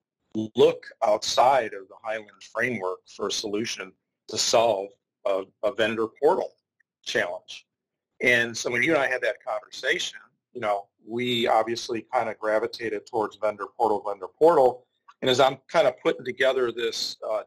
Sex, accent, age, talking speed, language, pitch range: male, American, 40-59, 160 wpm, English, 110-140 Hz